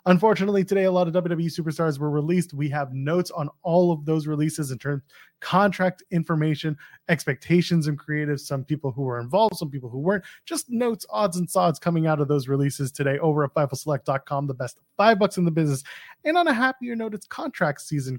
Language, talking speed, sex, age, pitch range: English, 210 wpm, male, 20-39, 140-195 Hz